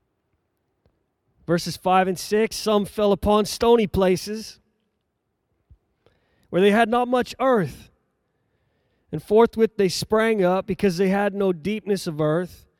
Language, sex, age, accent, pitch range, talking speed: English, male, 30-49, American, 145-200 Hz, 125 wpm